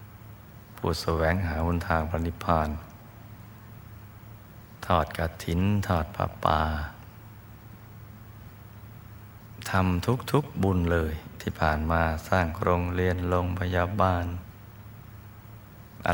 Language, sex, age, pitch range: Thai, male, 20-39, 85-110 Hz